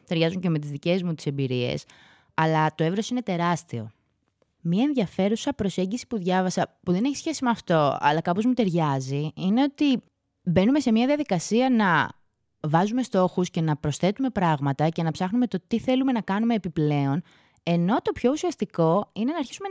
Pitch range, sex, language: 160-240 Hz, female, Greek